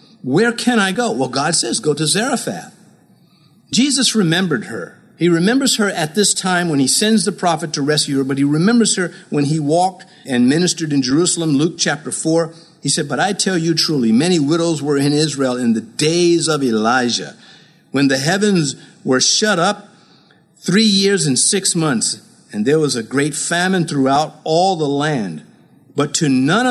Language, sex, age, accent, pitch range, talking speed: English, male, 50-69, American, 145-210 Hz, 185 wpm